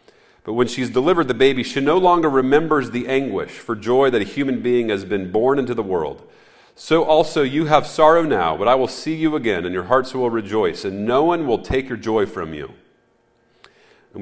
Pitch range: 115-160 Hz